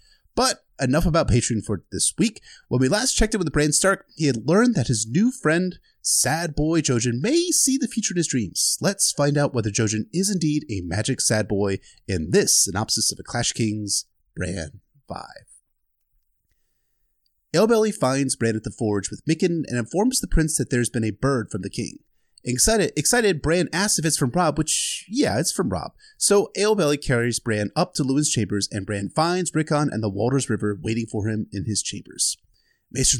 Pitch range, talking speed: 105-155 Hz, 195 wpm